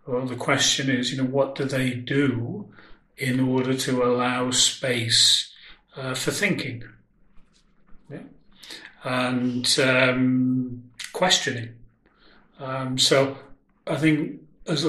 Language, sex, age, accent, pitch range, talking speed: English, male, 40-59, British, 125-140 Hz, 110 wpm